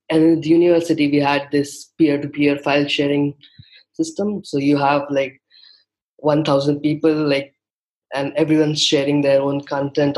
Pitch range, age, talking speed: 135-145 Hz, 20-39, 135 wpm